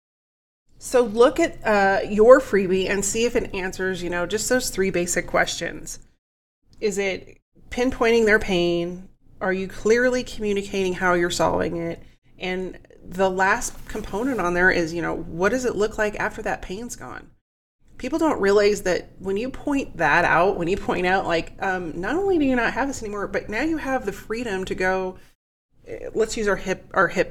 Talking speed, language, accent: 190 wpm, English, American